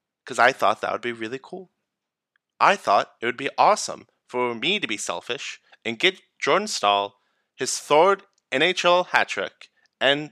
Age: 20-39